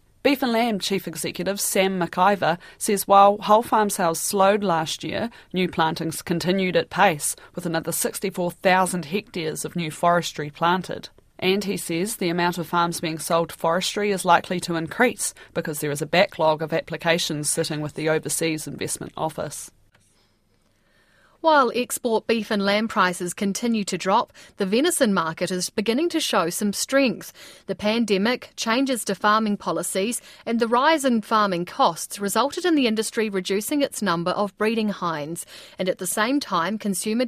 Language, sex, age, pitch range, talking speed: English, female, 30-49, 175-230 Hz, 165 wpm